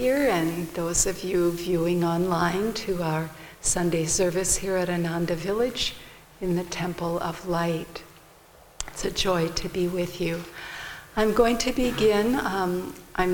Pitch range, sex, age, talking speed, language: 170-200 Hz, female, 60-79, 145 wpm, English